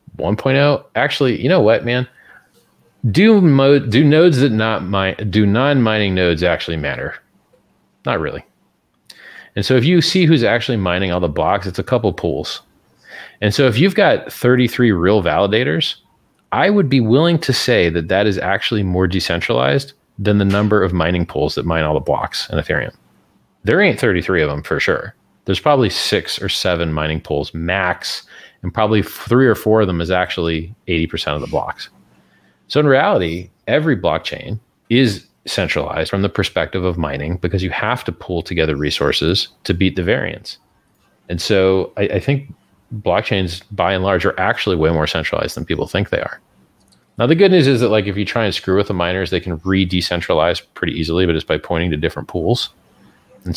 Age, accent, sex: 30-49, American, male